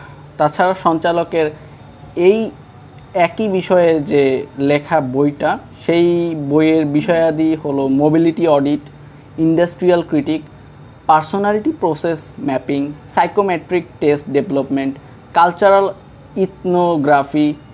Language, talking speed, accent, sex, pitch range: Bengali, 80 wpm, native, male, 140-175 Hz